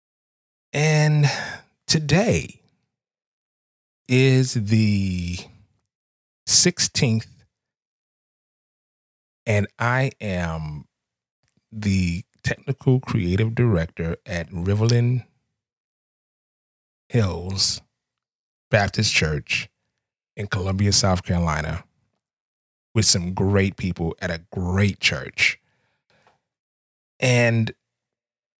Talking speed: 65 wpm